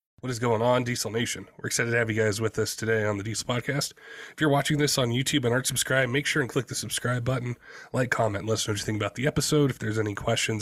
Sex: male